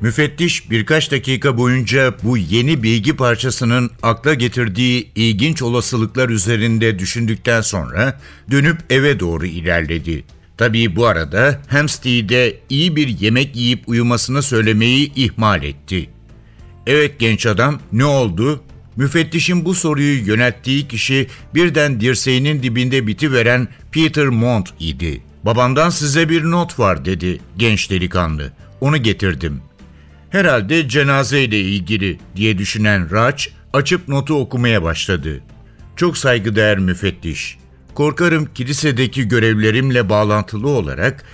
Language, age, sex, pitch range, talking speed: Turkish, 60-79, male, 105-140 Hz, 110 wpm